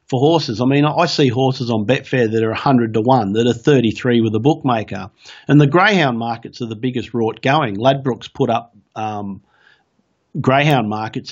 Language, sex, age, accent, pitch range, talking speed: English, male, 50-69, Australian, 110-135 Hz, 185 wpm